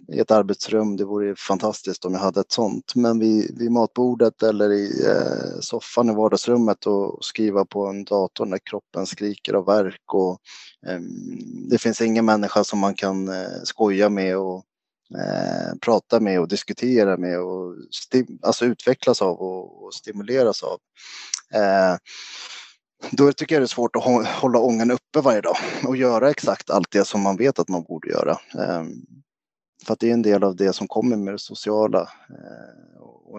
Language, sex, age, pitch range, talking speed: Swedish, male, 20-39, 95-115 Hz, 160 wpm